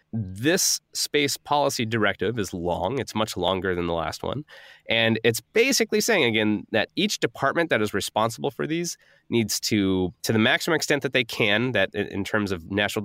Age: 20-39